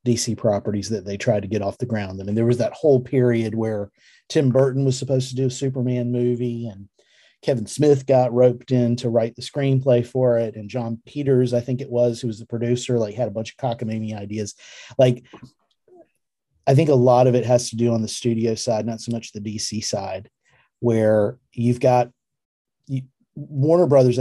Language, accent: English, American